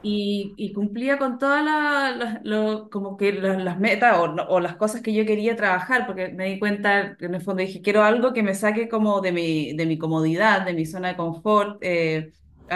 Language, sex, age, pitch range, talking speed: Spanish, female, 20-39, 180-215 Hz, 215 wpm